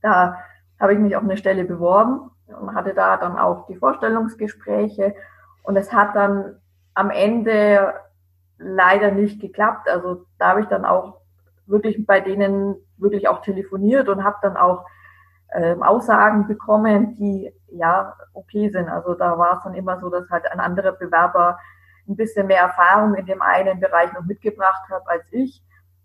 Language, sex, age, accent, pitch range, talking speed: German, female, 20-39, German, 175-205 Hz, 165 wpm